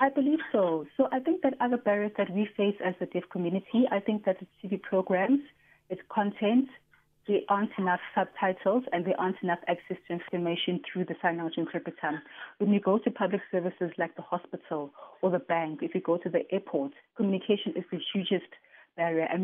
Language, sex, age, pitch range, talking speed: English, female, 30-49, 170-200 Hz, 200 wpm